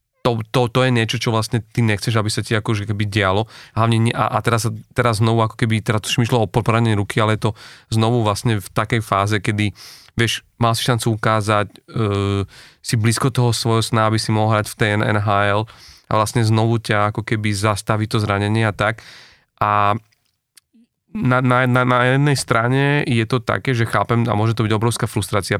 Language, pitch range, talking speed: Slovak, 105-120 Hz, 205 wpm